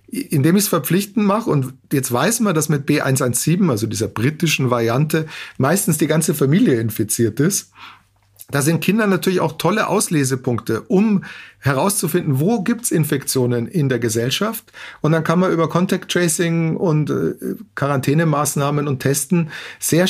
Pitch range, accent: 130-170 Hz, German